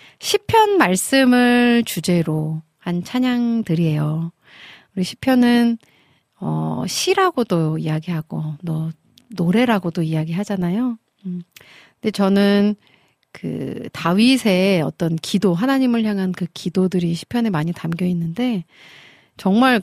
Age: 40-59